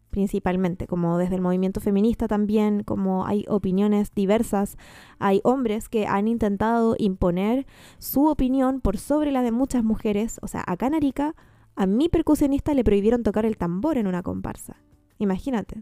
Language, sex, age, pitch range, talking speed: Spanish, female, 20-39, 190-245 Hz, 160 wpm